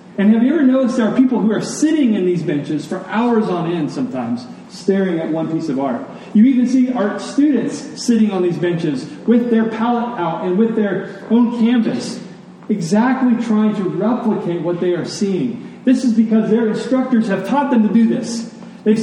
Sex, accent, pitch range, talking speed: male, American, 175-230 Hz, 200 wpm